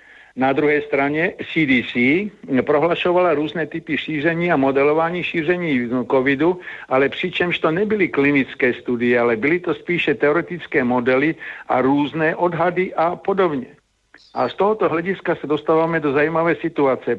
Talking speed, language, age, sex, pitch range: 135 wpm, Slovak, 60-79, male, 140-175 Hz